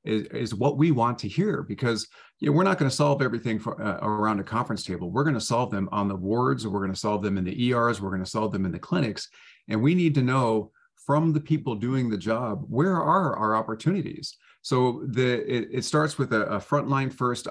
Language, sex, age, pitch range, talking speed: English, male, 40-59, 105-145 Hz, 240 wpm